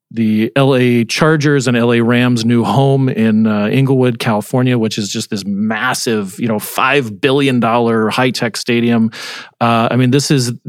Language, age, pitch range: English, 40-59, 110-135 Hz